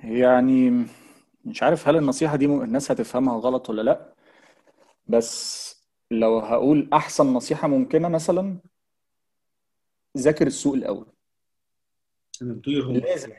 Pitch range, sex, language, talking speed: 130-195 Hz, male, Arabic, 100 wpm